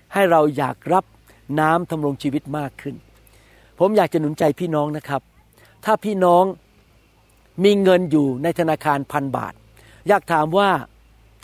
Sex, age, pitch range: male, 60-79, 130-195 Hz